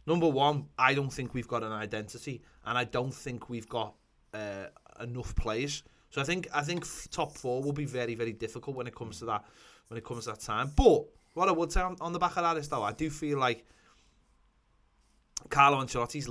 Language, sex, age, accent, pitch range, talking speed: English, male, 20-39, British, 115-145 Hz, 220 wpm